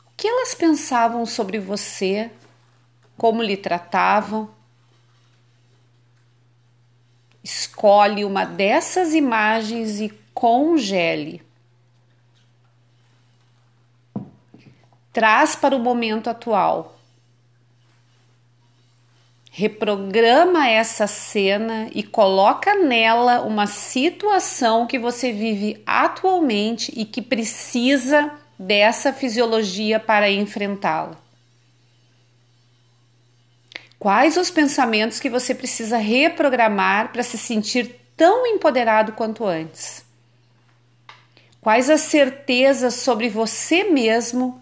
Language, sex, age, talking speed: Portuguese, female, 40-59, 80 wpm